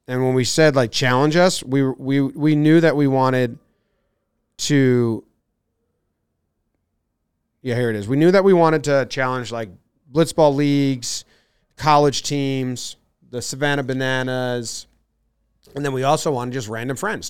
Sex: male